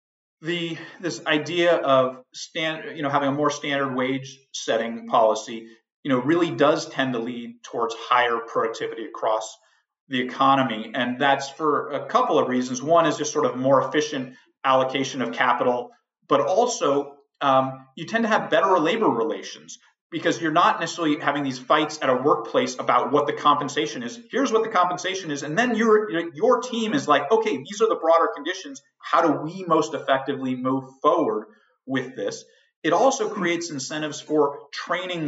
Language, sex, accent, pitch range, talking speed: English, male, American, 135-165 Hz, 175 wpm